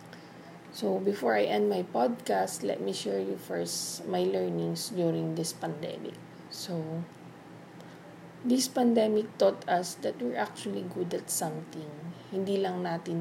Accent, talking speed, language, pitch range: Filipino, 135 wpm, English, 160-195 Hz